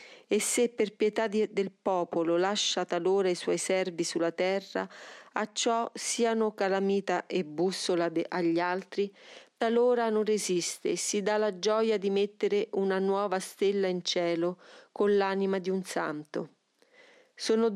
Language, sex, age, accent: Italian, female, 40-59, native